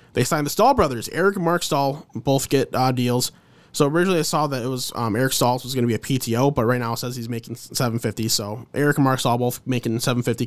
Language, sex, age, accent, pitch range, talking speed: English, male, 20-39, American, 115-140 Hz, 260 wpm